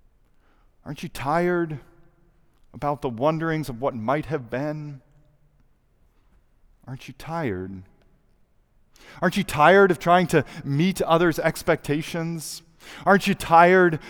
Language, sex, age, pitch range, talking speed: English, male, 40-59, 130-175 Hz, 110 wpm